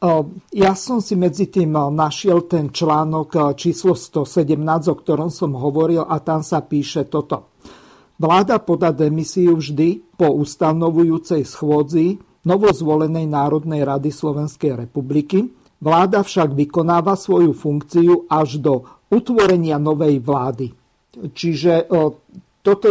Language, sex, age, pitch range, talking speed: Slovak, male, 50-69, 155-180 Hz, 115 wpm